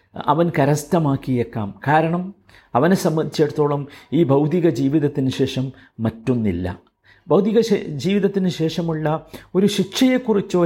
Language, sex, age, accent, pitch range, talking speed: Malayalam, male, 50-69, native, 145-220 Hz, 85 wpm